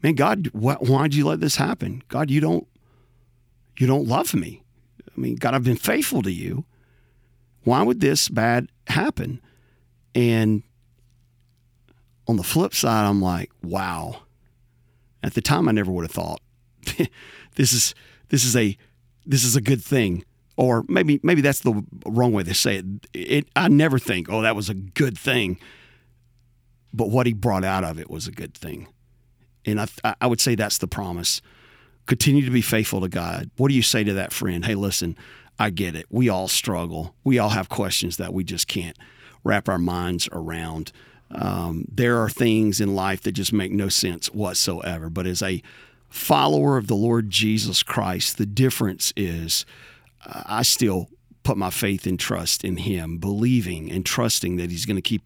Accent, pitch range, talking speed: American, 95-120 Hz, 180 wpm